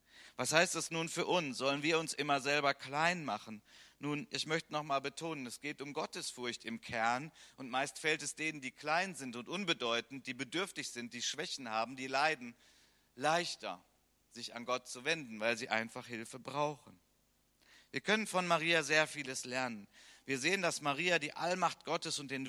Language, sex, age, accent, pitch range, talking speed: German, male, 50-69, German, 115-155 Hz, 185 wpm